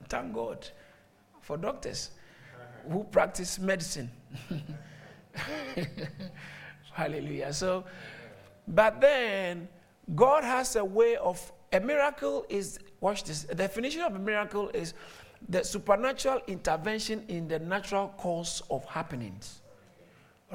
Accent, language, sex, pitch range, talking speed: Nigerian, English, male, 175-235 Hz, 110 wpm